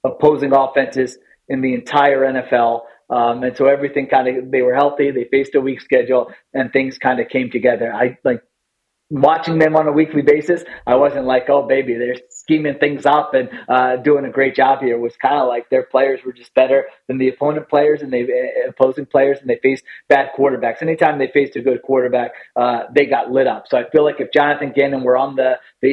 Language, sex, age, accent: English, male, 30-49, American